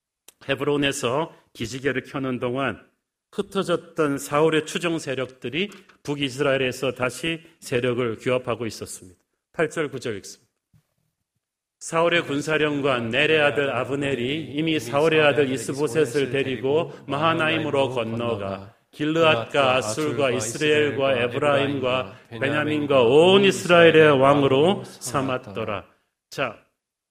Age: 40-59